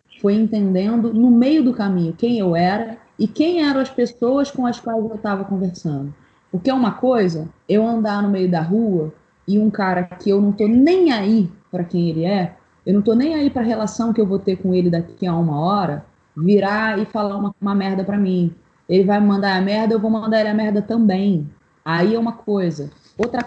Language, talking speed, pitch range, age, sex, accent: Portuguese, 225 wpm, 185-235 Hz, 20-39, female, Brazilian